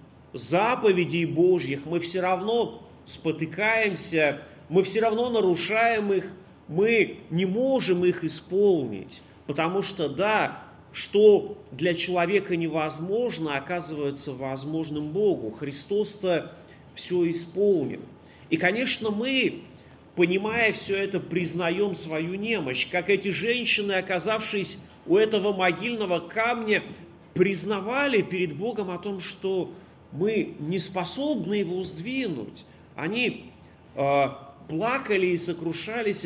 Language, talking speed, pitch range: Russian, 105 wpm, 165-220 Hz